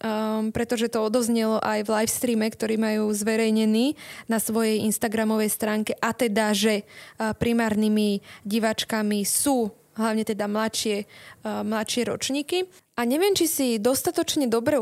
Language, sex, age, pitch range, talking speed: Slovak, female, 20-39, 225-275 Hz, 140 wpm